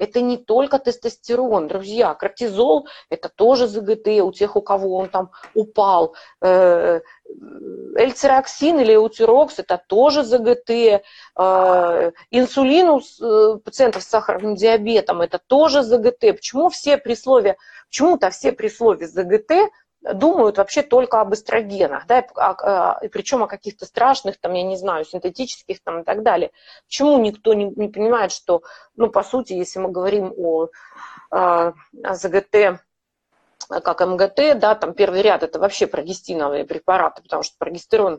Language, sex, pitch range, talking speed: Russian, female, 195-270 Hz, 140 wpm